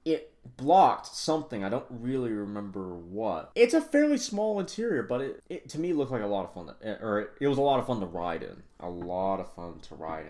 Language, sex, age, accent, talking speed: English, male, 20-39, American, 235 wpm